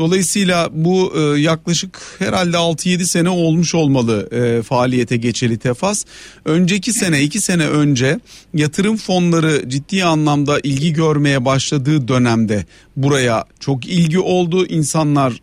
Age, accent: 40-59, native